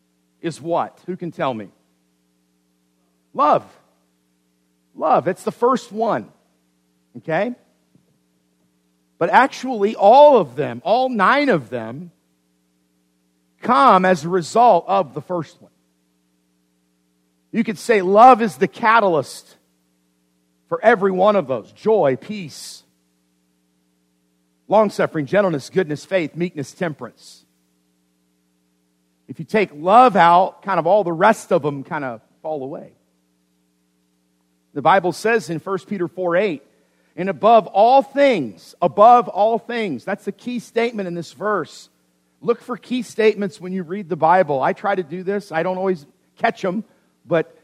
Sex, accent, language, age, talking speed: male, American, English, 50-69, 135 wpm